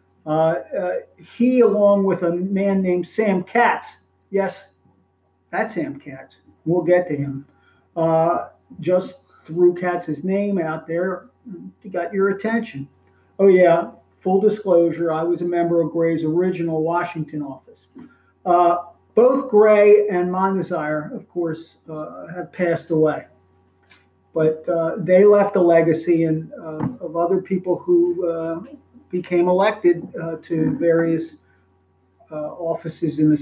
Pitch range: 155-185 Hz